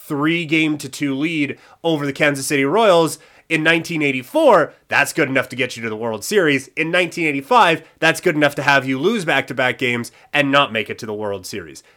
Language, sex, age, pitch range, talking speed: English, male, 30-49, 135-175 Hz, 190 wpm